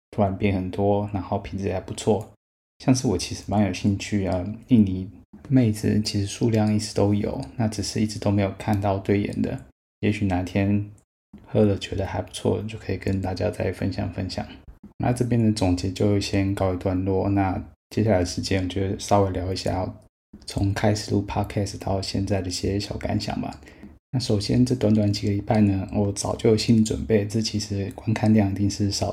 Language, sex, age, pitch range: Chinese, male, 20-39, 95-105 Hz